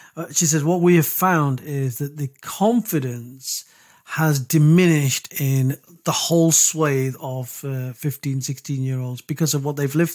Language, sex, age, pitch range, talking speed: English, male, 40-59, 140-160 Hz, 155 wpm